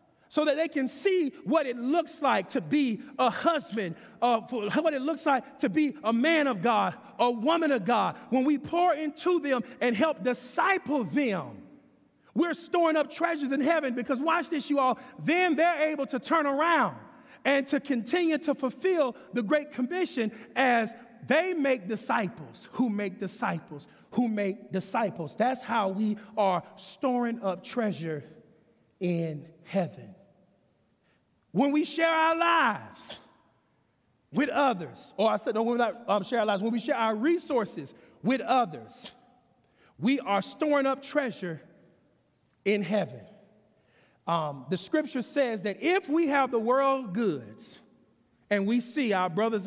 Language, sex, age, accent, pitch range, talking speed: English, male, 40-59, American, 210-295 Hz, 155 wpm